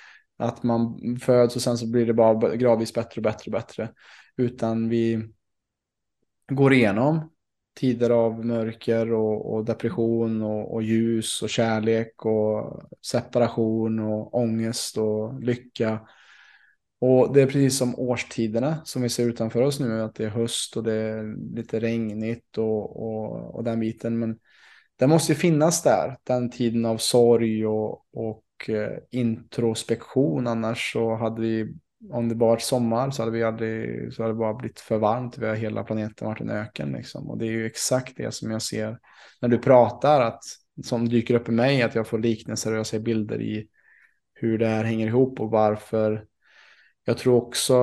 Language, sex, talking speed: Swedish, male, 175 wpm